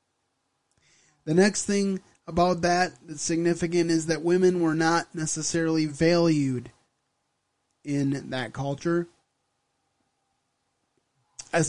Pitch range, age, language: 135-165 Hz, 30-49, English